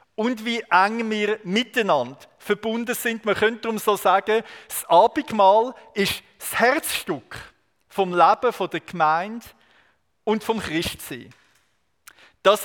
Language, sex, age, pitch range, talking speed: German, male, 50-69, 165-210 Hz, 120 wpm